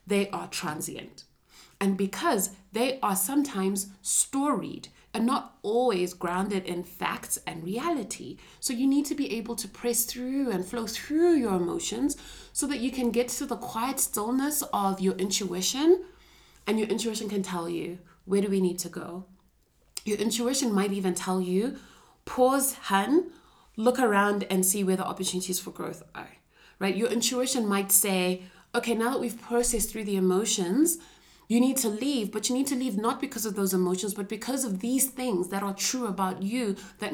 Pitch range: 190-240 Hz